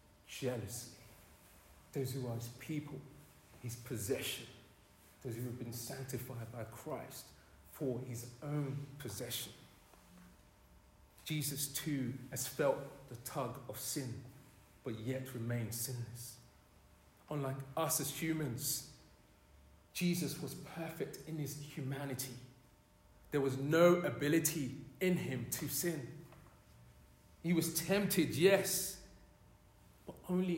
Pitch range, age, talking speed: 115-150 Hz, 40-59, 110 wpm